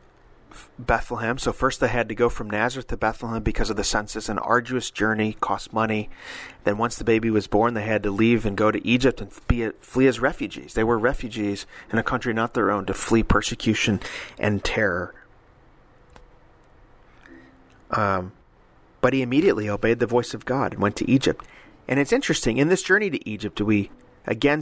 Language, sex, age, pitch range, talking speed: English, male, 30-49, 100-120 Hz, 185 wpm